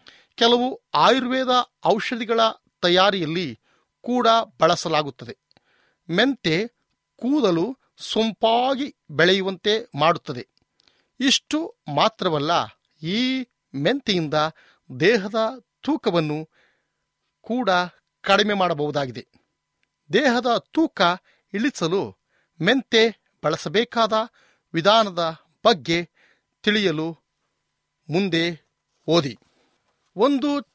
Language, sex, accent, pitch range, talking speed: Kannada, male, native, 165-240 Hz, 60 wpm